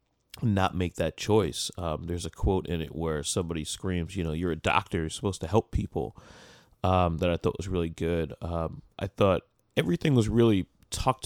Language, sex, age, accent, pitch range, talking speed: English, male, 30-49, American, 85-105 Hz, 195 wpm